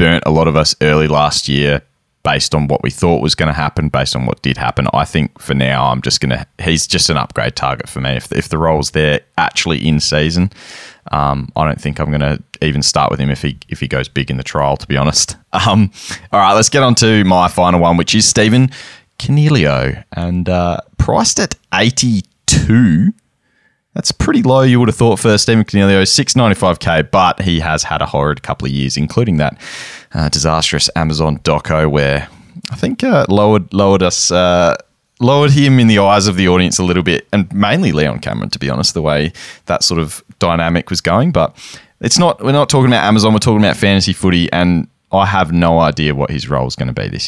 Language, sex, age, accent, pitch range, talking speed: English, male, 20-39, Australian, 75-100 Hz, 220 wpm